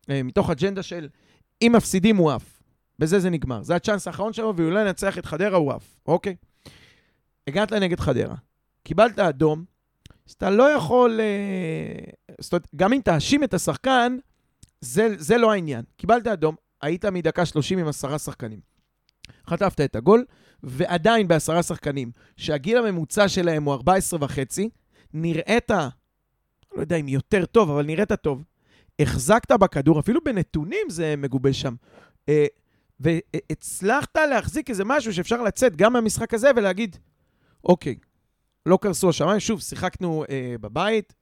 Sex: male